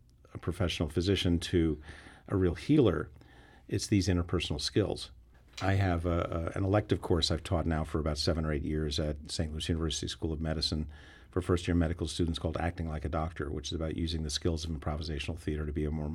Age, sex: 50-69, male